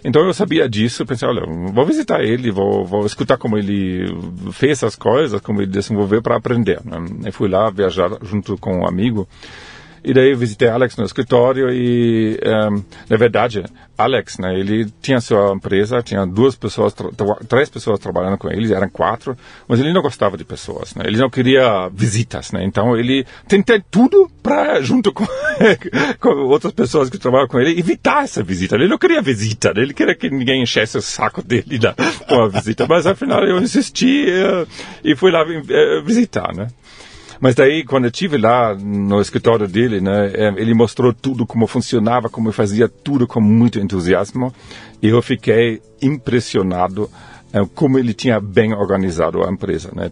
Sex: male